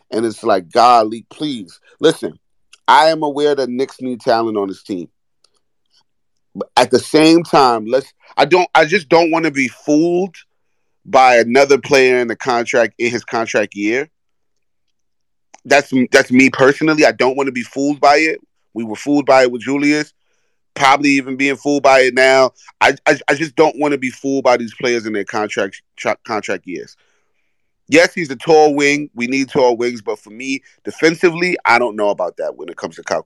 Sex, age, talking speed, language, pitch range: male, 30-49, 195 wpm, English, 115-140 Hz